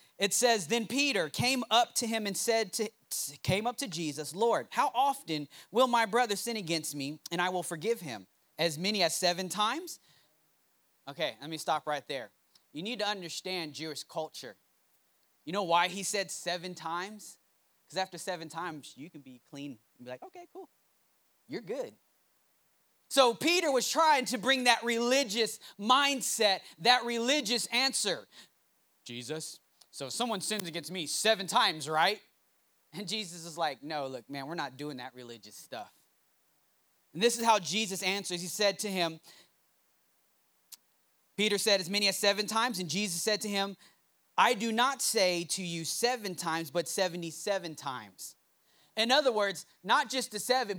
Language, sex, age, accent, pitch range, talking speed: English, male, 30-49, American, 165-230 Hz, 170 wpm